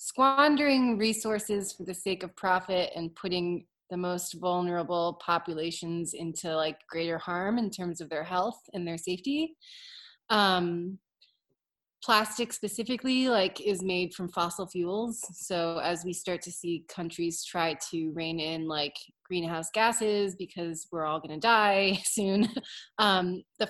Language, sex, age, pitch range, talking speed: English, female, 20-39, 165-200 Hz, 140 wpm